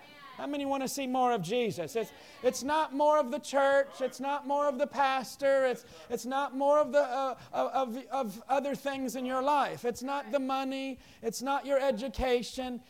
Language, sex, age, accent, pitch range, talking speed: English, male, 40-59, American, 245-290 Hz, 200 wpm